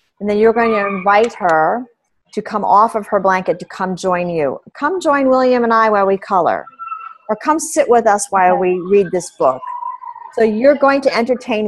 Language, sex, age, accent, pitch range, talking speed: English, female, 40-59, American, 190-250 Hz, 205 wpm